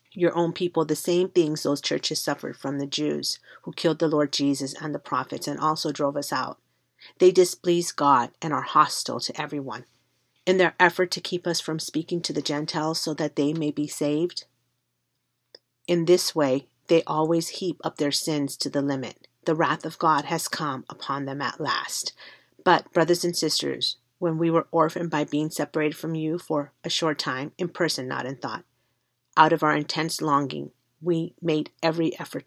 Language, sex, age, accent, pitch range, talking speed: English, female, 40-59, American, 145-170 Hz, 190 wpm